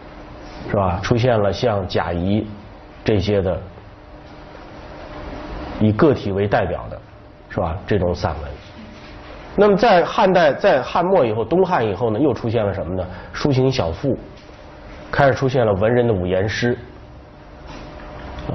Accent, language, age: native, Chinese, 30-49